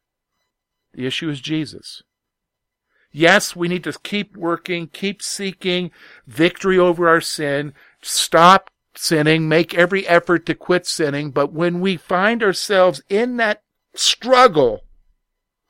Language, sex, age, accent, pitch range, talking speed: English, male, 50-69, American, 110-180 Hz, 120 wpm